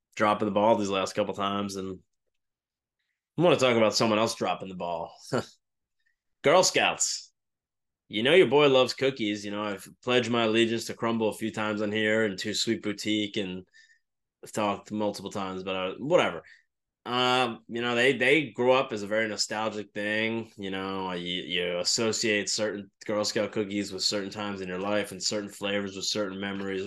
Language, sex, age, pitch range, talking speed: English, male, 20-39, 100-120 Hz, 190 wpm